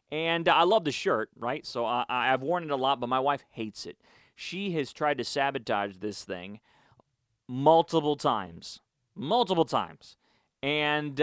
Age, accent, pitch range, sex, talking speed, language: 30-49, American, 120-160 Hz, male, 165 wpm, English